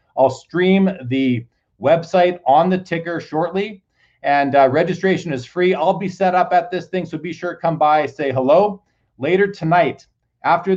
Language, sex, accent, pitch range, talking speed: English, male, American, 140-180 Hz, 175 wpm